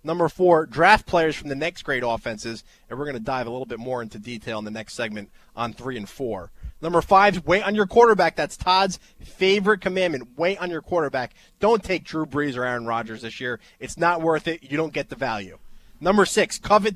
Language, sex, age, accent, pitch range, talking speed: English, male, 30-49, American, 135-175 Hz, 225 wpm